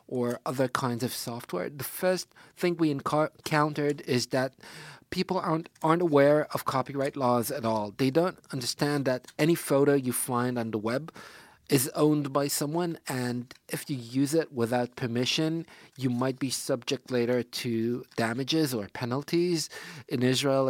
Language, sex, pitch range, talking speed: English, male, 120-145 Hz, 160 wpm